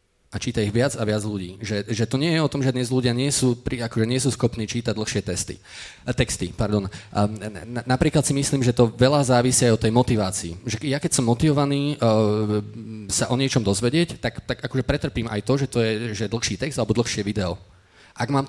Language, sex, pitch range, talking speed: Slovak, male, 100-130 Hz, 210 wpm